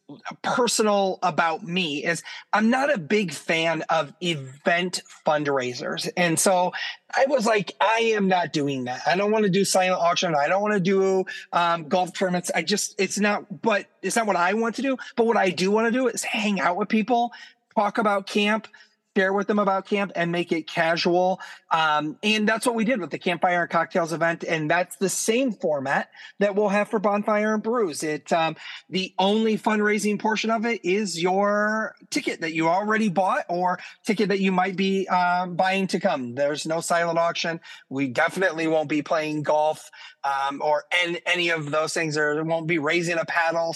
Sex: male